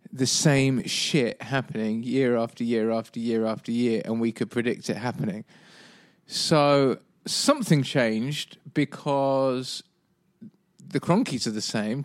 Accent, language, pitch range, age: British, English, 115-155 Hz, 20-39